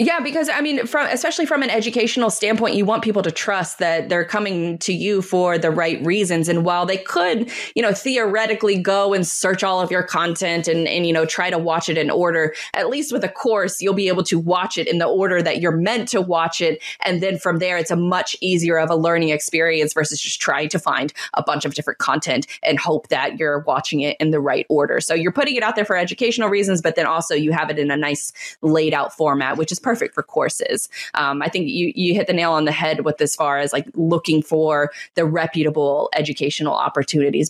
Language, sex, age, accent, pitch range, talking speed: English, female, 20-39, American, 160-210 Hz, 240 wpm